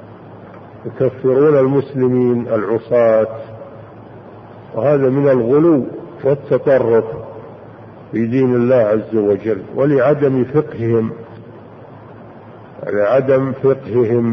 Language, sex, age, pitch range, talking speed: Arabic, male, 50-69, 115-140 Hz, 65 wpm